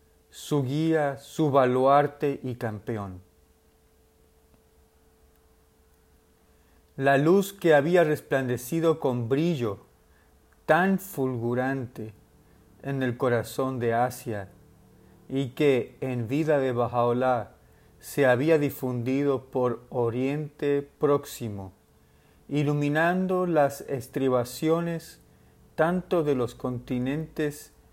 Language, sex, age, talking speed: Spanish, male, 40-59, 85 wpm